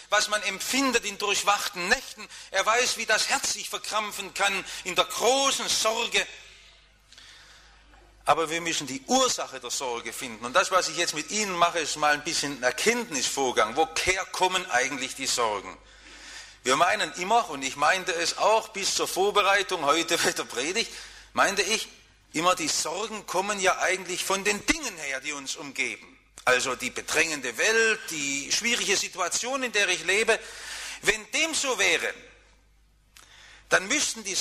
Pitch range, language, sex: 175-225 Hz, English, male